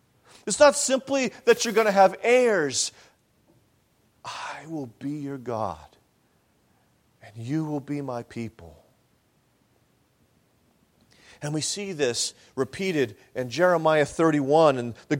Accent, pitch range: American, 130-180 Hz